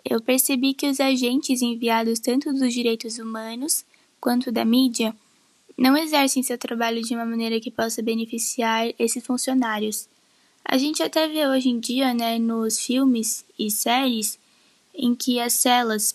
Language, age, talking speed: Portuguese, 10-29, 150 wpm